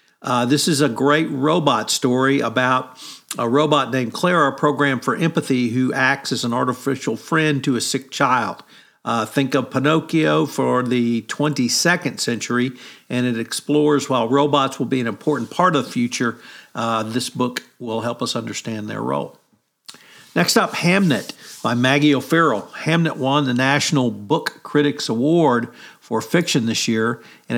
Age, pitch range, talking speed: 50-69, 120-150 Hz, 160 wpm